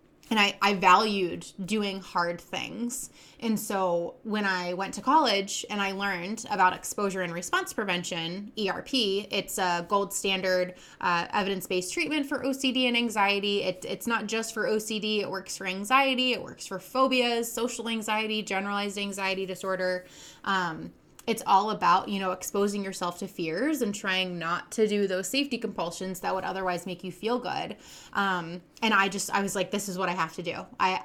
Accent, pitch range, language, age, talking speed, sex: American, 185-225 Hz, English, 20-39, 180 wpm, female